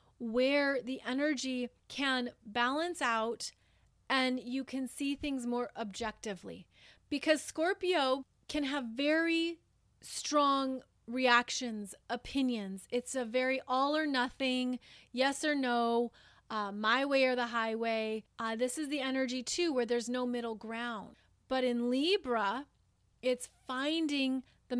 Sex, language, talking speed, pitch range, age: female, English, 130 wpm, 230-275 Hz, 30-49